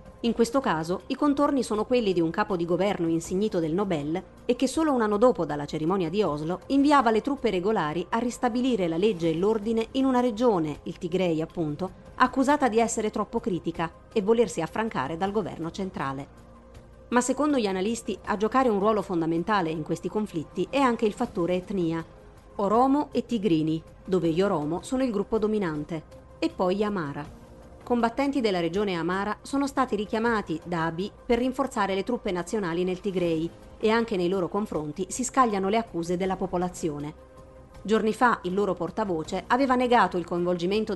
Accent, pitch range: native, 170-230 Hz